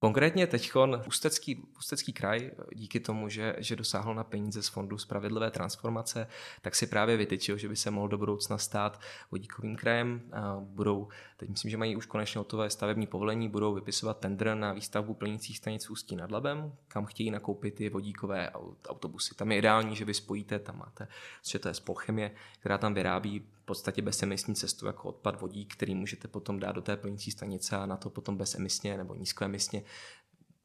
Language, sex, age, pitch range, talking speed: Czech, male, 20-39, 100-110 Hz, 180 wpm